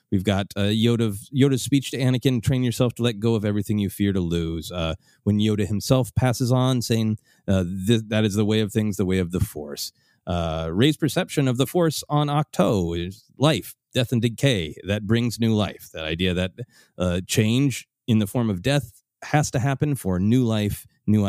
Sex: male